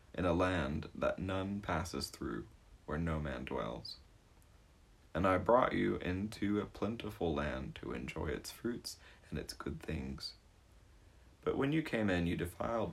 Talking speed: 160 wpm